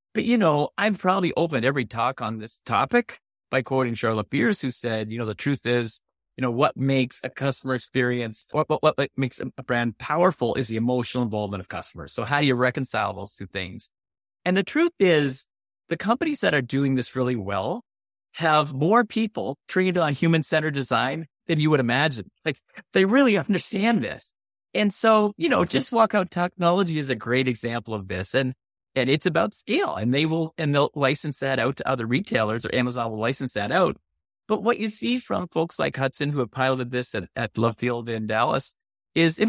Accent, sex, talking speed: American, male, 205 wpm